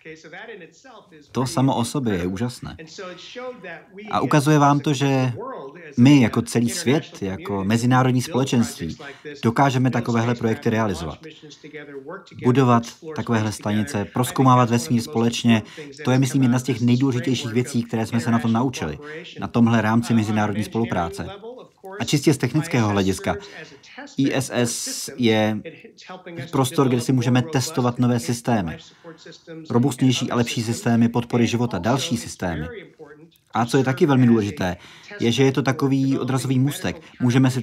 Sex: male